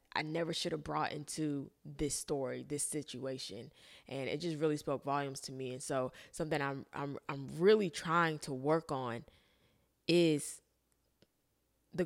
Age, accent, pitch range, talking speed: 20-39, American, 150-195 Hz, 155 wpm